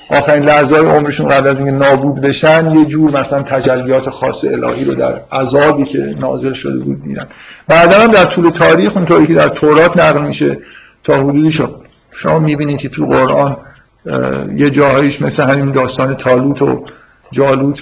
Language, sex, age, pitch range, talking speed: Persian, male, 50-69, 130-155 Hz, 165 wpm